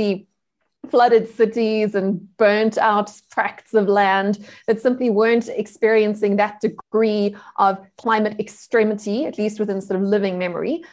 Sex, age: female, 20-39